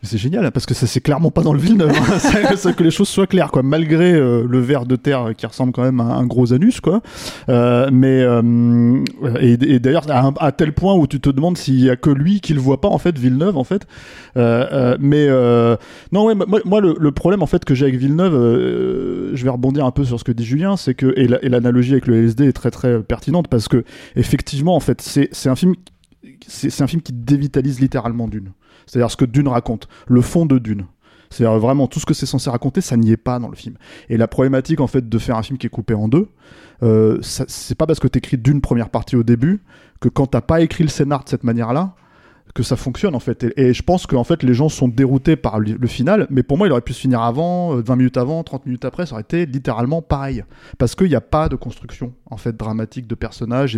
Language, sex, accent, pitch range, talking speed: French, male, French, 120-150 Hz, 260 wpm